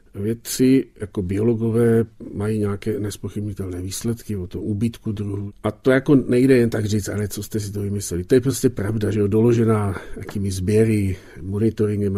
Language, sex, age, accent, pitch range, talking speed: Czech, male, 50-69, native, 105-130 Hz, 170 wpm